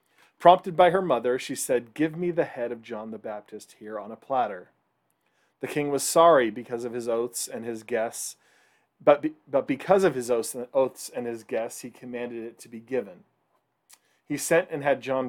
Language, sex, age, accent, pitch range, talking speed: English, male, 40-59, American, 120-155 Hz, 195 wpm